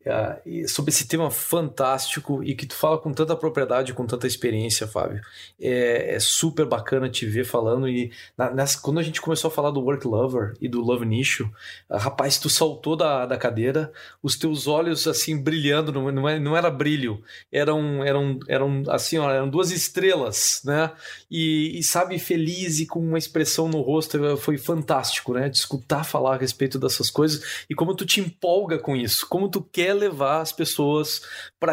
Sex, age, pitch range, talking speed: male, 20-39, 140-165 Hz, 180 wpm